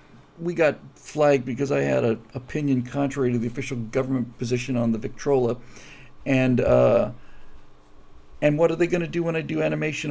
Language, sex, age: English, male, 50-69